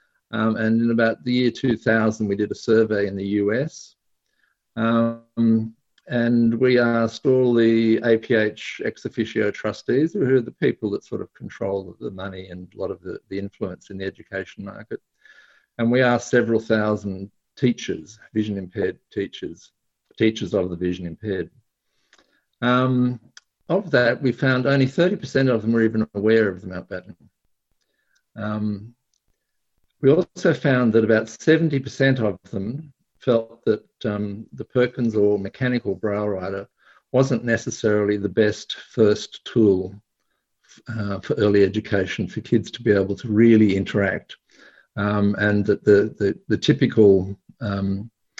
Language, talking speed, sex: English, 145 wpm, male